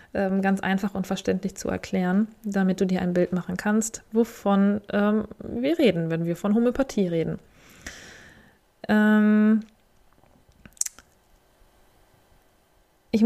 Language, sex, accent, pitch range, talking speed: German, female, German, 190-225 Hz, 110 wpm